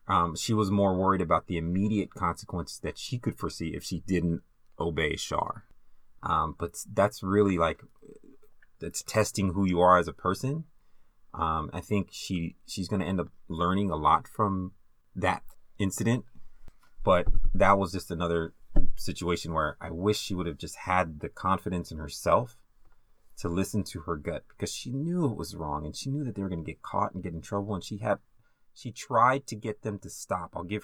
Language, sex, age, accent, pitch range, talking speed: English, male, 30-49, American, 85-105 Hz, 195 wpm